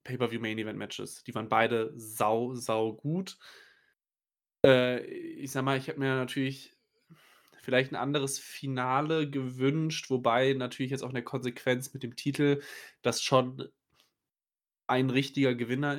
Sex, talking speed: male, 130 wpm